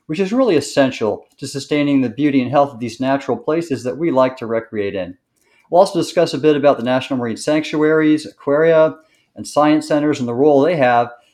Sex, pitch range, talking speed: male, 120-145 Hz, 205 wpm